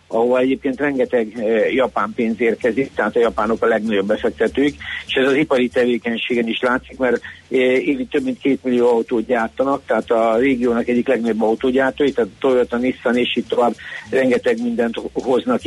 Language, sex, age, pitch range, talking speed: Hungarian, male, 60-79, 115-135 Hz, 160 wpm